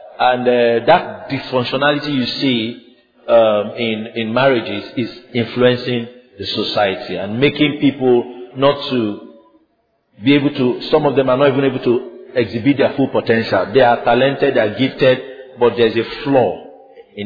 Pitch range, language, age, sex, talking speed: 115-145 Hz, English, 50-69, male, 155 wpm